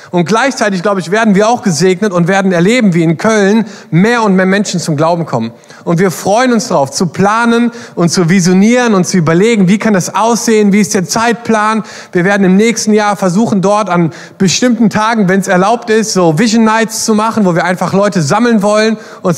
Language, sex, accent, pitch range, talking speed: German, male, German, 175-215 Hz, 210 wpm